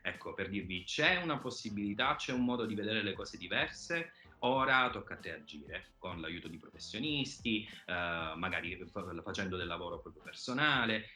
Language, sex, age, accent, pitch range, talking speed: Italian, male, 30-49, native, 90-115 Hz, 160 wpm